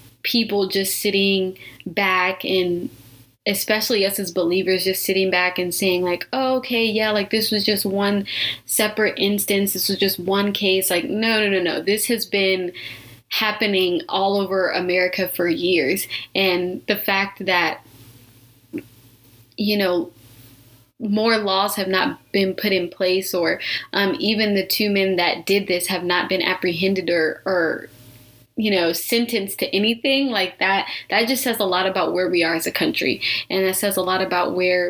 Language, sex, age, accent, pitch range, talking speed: English, female, 20-39, American, 175-205 Hz, 170 wpm